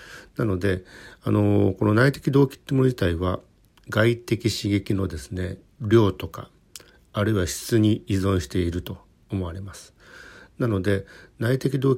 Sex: male